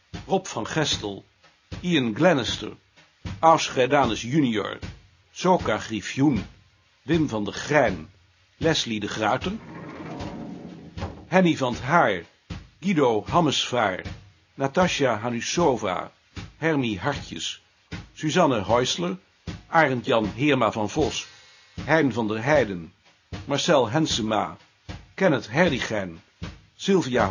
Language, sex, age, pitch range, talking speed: Dutch, male, 60-79, 100-160 Hz, 90 wpm